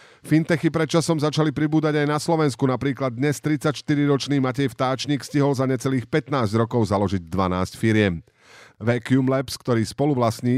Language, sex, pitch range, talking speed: Slovak, male, 105-135 Hz, 140 wpm